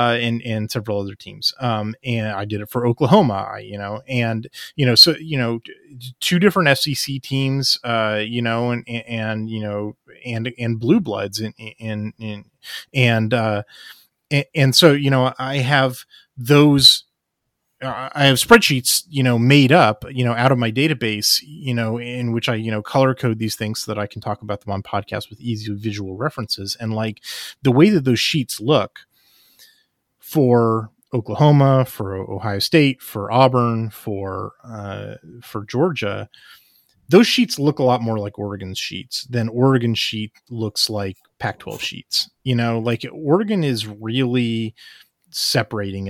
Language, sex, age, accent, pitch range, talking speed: English, male, 30-49, American, 110-135 Hz, 170 wpm